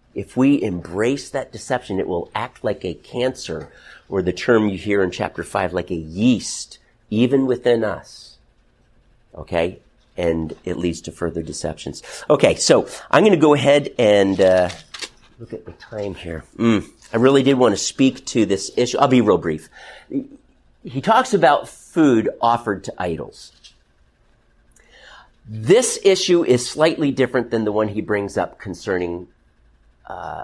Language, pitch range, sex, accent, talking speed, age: English, 85-125 Hz, male, American, 160 wpm, 50-69